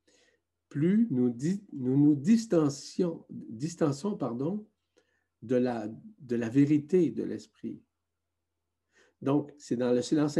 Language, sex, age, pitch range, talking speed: French, male, 50-69, 100-140 Hz, 115 wpm